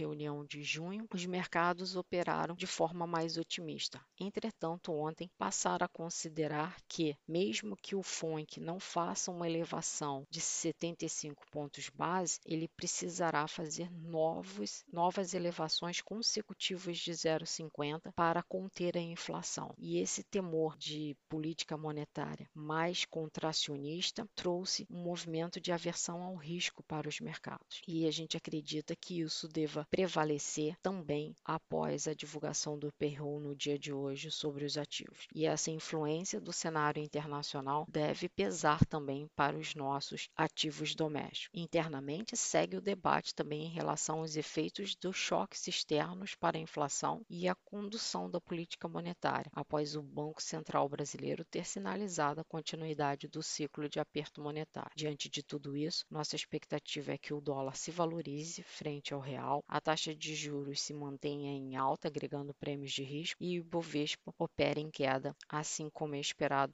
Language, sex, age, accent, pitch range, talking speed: Portuguese, female, 40-59, Brazilian, 145-170 Hz, 150 wpm